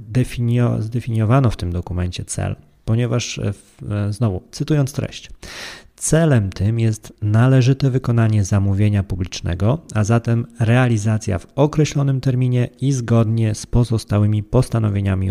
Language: Polish